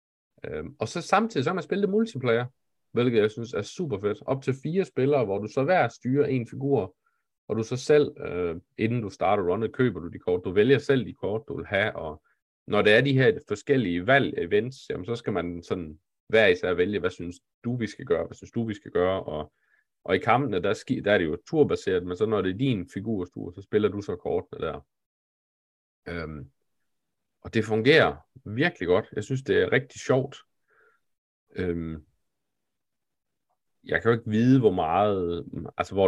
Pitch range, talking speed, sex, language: 90-135 Hz, 200 wpm, male, Danish